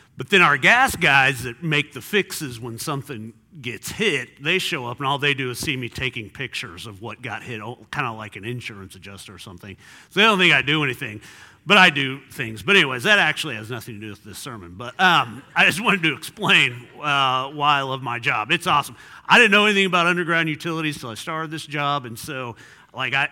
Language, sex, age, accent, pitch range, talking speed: English, male, 40-59, American, 115-150 Hz, 230 wpm